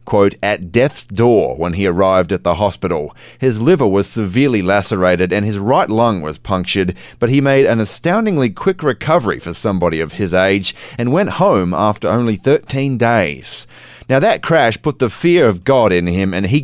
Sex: male